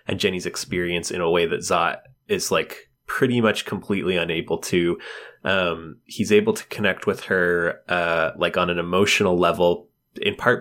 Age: 20-39